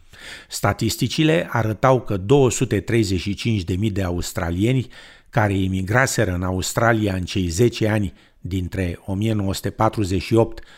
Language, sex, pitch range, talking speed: Romanian, male, 100-125 Hz, 90 wpm